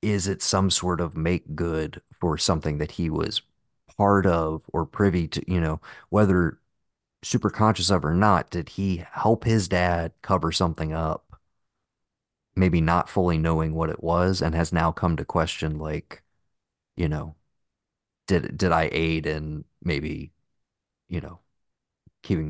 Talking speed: 155 wpm